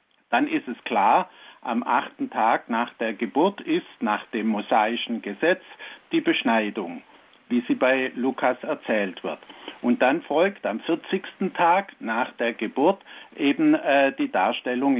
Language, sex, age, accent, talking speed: German, male, 70-89, German, 145 wpm